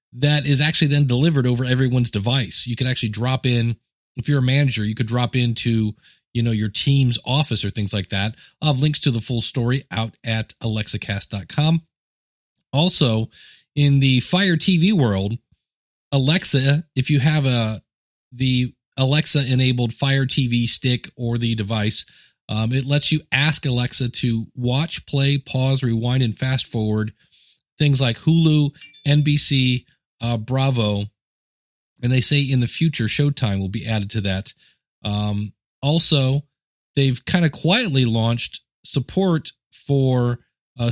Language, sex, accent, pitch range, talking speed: English, male, American, 115-145 Hz, 145 wpm